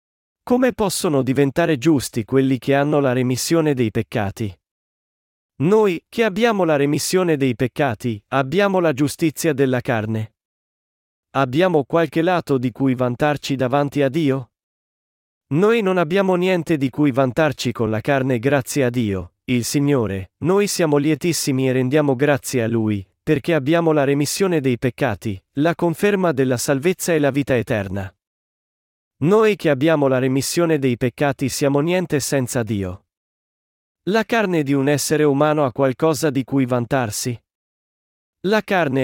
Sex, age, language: male, 40-59, Italian